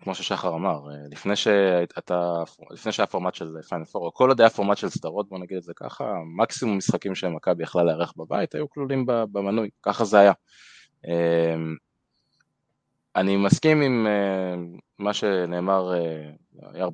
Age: 20-39